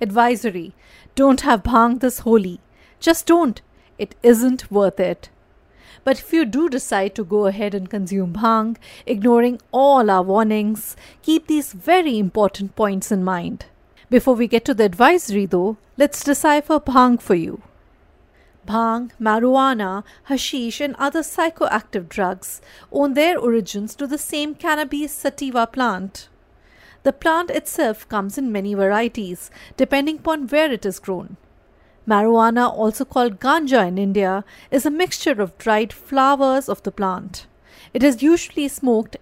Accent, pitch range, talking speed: Indian, 205-275 Hz, 145 wpm